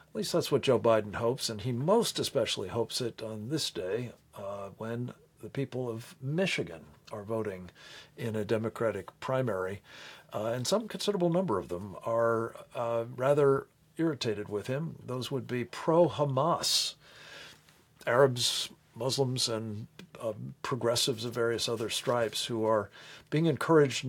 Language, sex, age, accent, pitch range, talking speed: English, male, 50-69, American, 115-145 Hz, 145 wpm